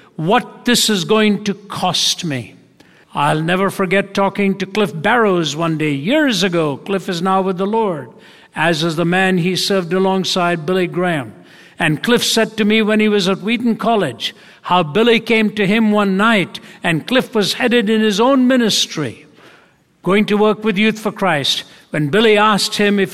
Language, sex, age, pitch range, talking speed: English, male, 60-79, 170-215 Hz, 185 wpm